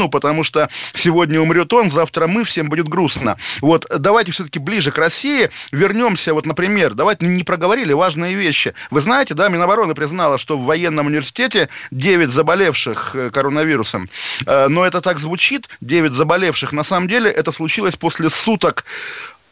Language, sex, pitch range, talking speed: Russian, male, 150-180 Hz, 150 wpm